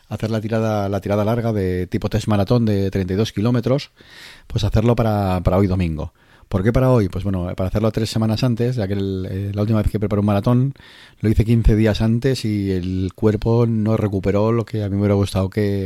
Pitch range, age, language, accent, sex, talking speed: 95-115 Hz, 30-49, Spanish, Spanish, male, 225 wpm